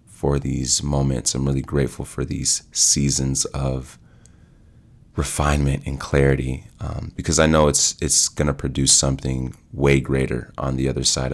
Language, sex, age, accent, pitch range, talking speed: English, male, 30-49, American, 65-75 Hz, 155 wpm